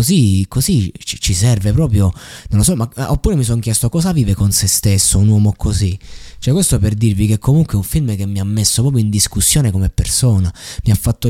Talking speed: 225 wpm